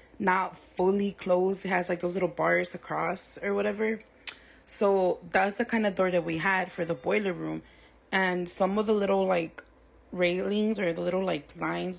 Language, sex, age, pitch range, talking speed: English, female, 20-39, 175-205 Hz, 185 wpm